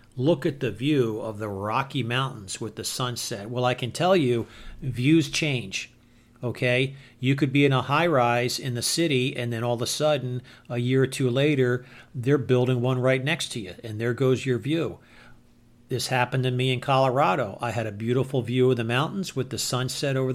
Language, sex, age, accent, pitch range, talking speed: English, male, 50-69, American, 120-145 Hz, 205 wpm